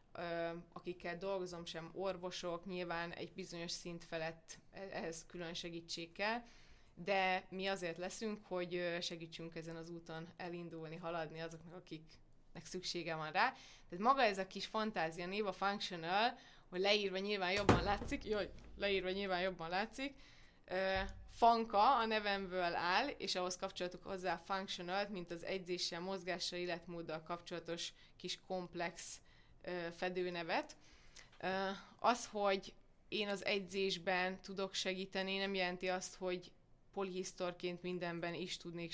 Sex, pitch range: female, 170-195 Hz